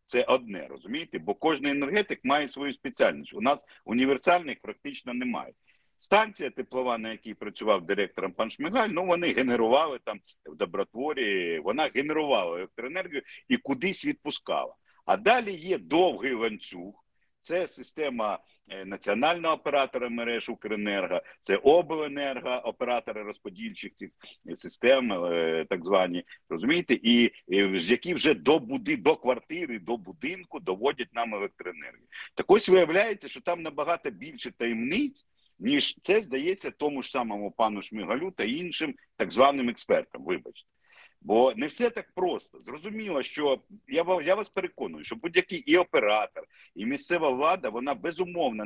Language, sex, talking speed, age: Ukrainian, male, 130 wpm, 50-69